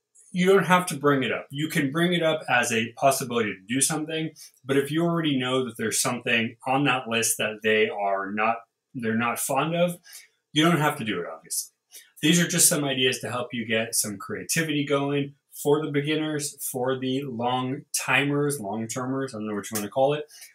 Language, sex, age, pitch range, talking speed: English, male, 20-39, 125-165 Hz, 205 wpm